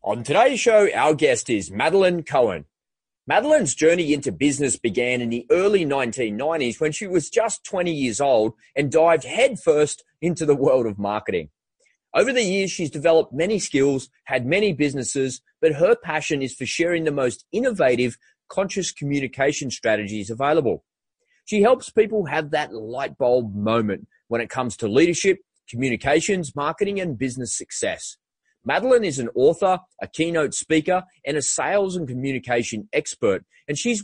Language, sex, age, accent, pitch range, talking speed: English, male, 30-49, Australian, 125-190 Hz, 155 wpm